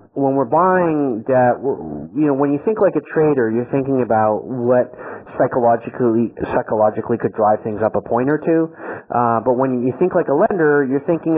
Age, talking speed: 40-59, 190 wpm